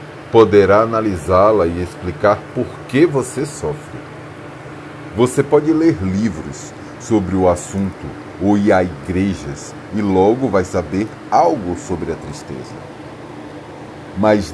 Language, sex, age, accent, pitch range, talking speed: Portuguese, male, 40-59, Brazilian, 95-150 Hz, 115 wpm